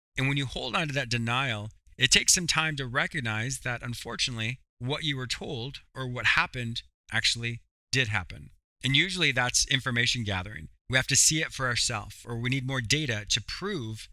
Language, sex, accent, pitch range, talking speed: English, male, American, 105-145 Hz, 190 wpm